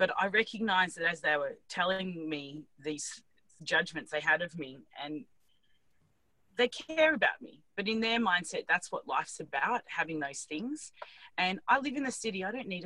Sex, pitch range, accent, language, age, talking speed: female, 155-200 Hz, Australian, English, 30-49, 185 wpm